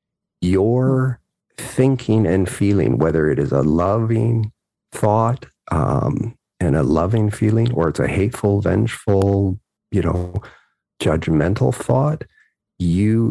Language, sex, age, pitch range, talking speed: English, male, 40-59, 90-115 Hz, 115 wpm